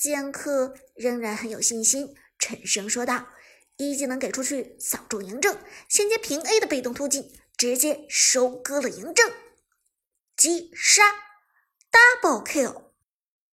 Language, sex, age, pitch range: Chinese, male, 50-69, 245-345 Hz